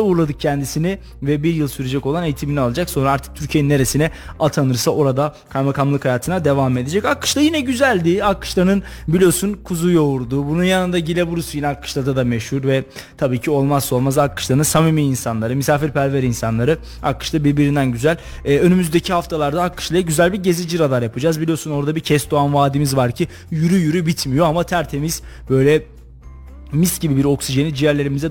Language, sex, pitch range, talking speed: Turkish, male, 140-175 Hz, 155 wpm